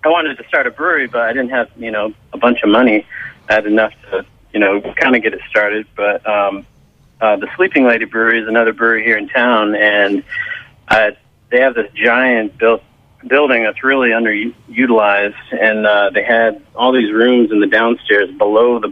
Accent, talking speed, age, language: American, 200 wpm, 40-59, English